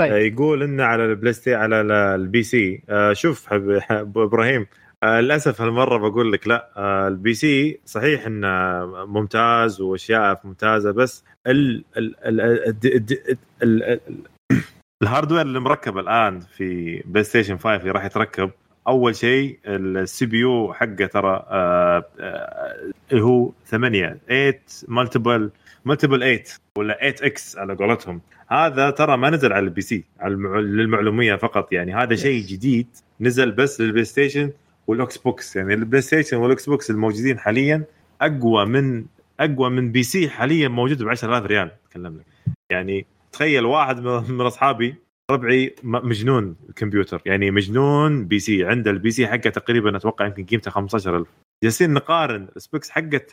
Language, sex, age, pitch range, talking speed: Arabic, male, 20-39, 105-135 Hz, 135 wpm